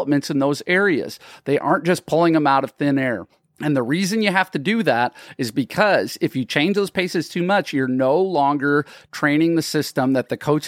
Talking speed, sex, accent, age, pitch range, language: 215 wpm, male, American, 40-59, 135-165 Hz, English